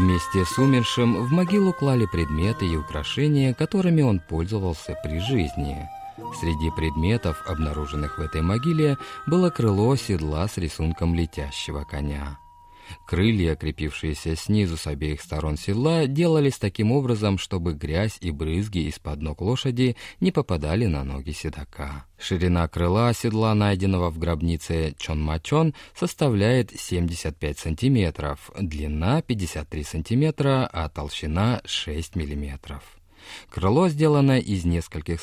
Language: Russian